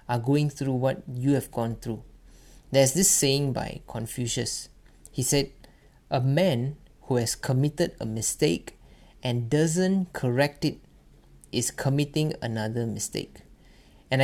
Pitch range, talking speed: 120-150 Hz, 130 wpm